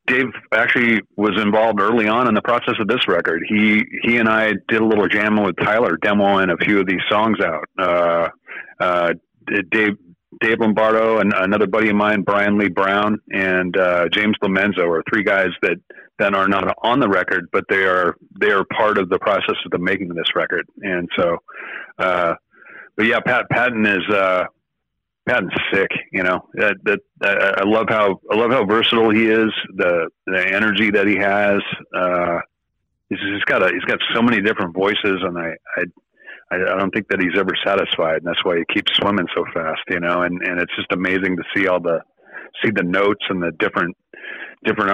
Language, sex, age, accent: English, male, 40-59, American